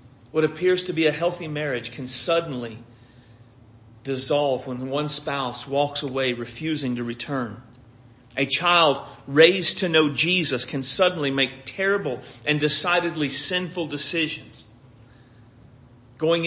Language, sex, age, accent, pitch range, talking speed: English, male, 40-59, American, 120-155 Hz, 120 wpm